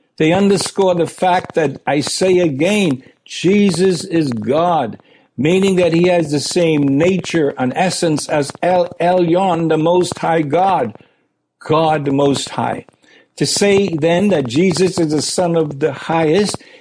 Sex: male